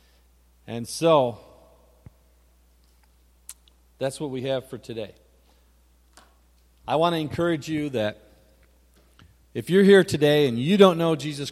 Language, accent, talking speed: English, American, 120 wpm